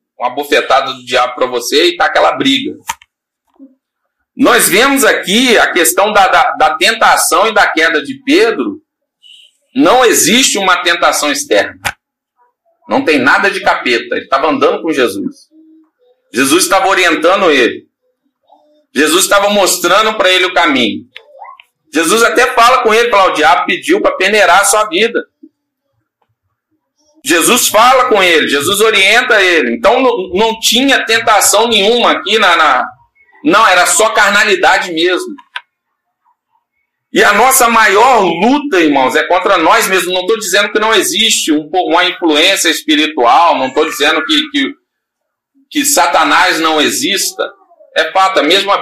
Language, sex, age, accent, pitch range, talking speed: Portuguese, male, 40-59, Brazilian, 220-335 Hz, 140 wpm